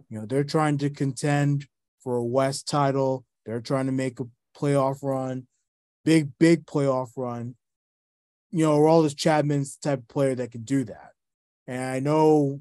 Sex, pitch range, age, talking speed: male, 120-155 Hz, 20-39, 175 wpm